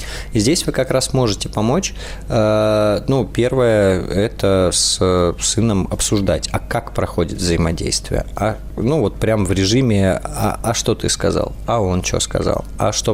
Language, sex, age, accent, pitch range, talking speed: Russian, male, 20-39, native, 90-110 Hz, 160 wpm